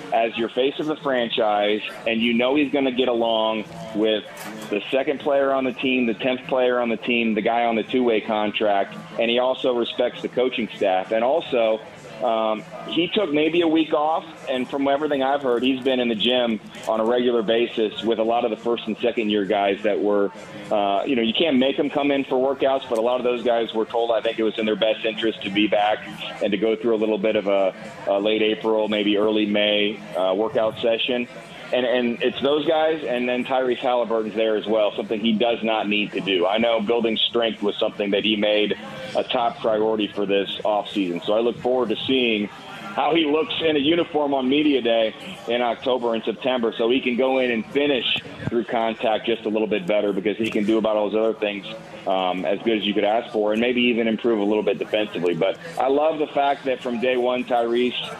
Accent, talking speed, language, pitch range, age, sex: American, 235 wpm, English, 110-125 Hz, 30-49, male